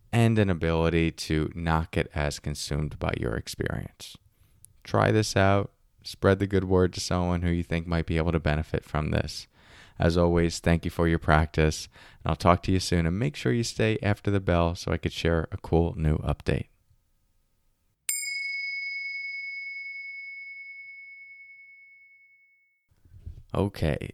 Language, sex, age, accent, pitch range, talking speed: English, male, 20-39, American, 85-110 Hz, 150 wpm